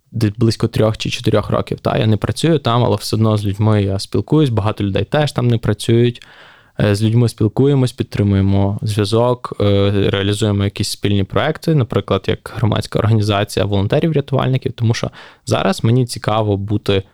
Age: 20-39